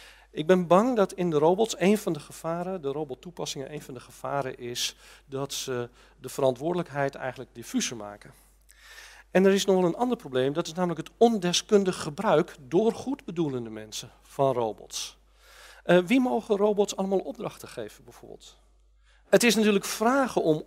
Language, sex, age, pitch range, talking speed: Dutch, male, 50-69, 130-185 Hz, 165 wpm